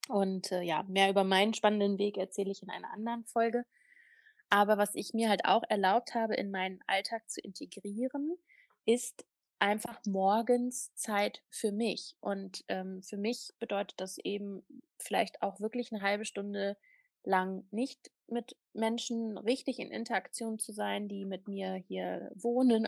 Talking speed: 155 wpm